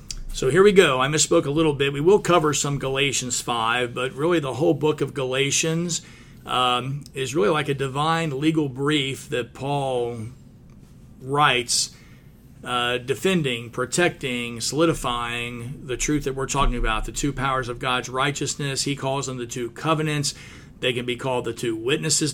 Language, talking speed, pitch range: English, 165 wpm, 125-155 Hz